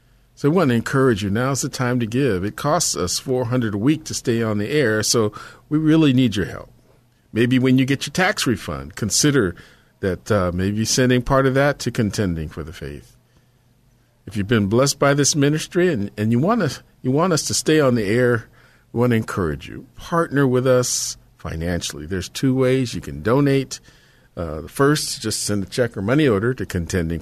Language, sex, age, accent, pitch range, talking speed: English, male, 50-69, American, 95-135 Hz, 205 wpm